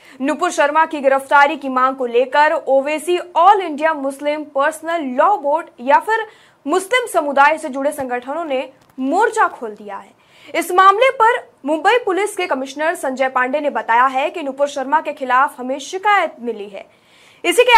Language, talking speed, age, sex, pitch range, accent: Hindi, 170 wpm, 20-39, female, 270-360 Hz, native